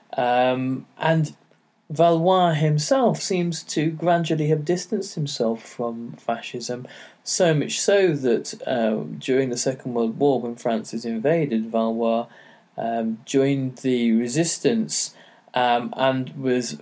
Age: 20-39